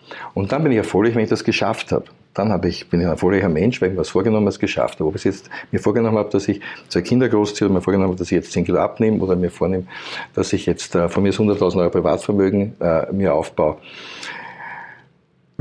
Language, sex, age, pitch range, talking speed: German, male, 50-69, 95-120 Hz, 235 wpm